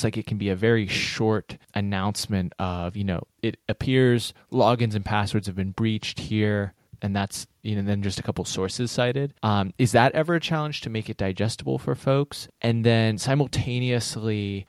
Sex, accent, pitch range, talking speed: male, American, 100-115 Hz, 185 wpm